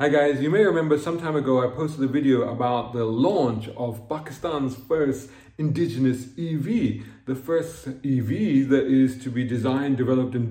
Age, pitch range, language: 40-59, 125-150 Hz, English